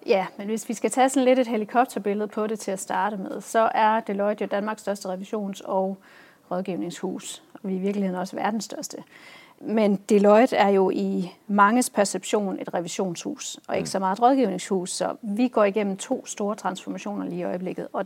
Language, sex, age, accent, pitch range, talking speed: Danish, female, 40-59, native, 185-220 Hz, 195 wpm